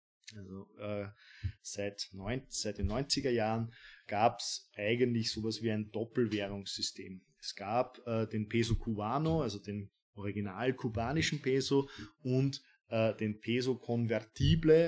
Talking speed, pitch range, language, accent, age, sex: 105 wpm, 115-135 Hz, German, German, 20-39, male